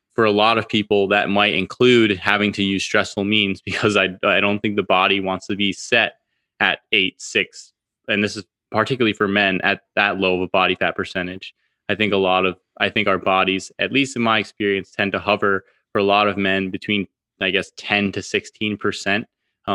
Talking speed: 205 wpm